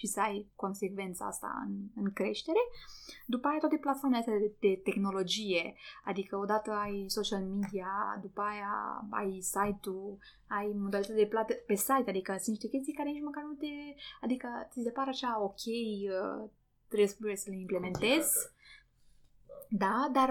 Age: 20-39